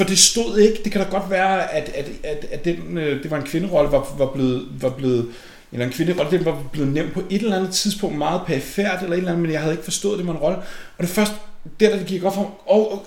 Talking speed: 280 wpm